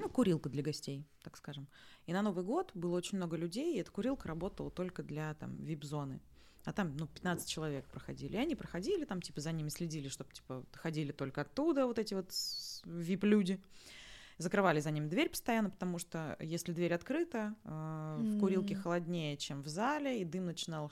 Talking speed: 185 wpm